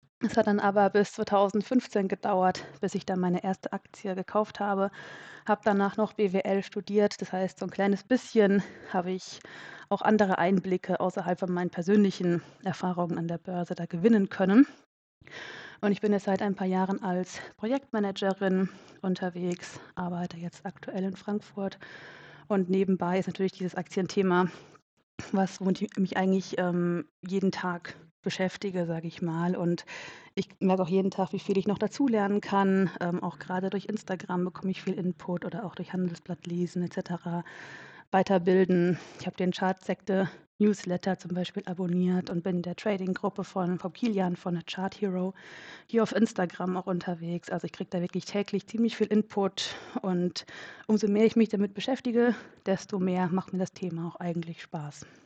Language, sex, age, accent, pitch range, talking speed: German, female, 20-39, German, 180-200 Hz, 165 wpm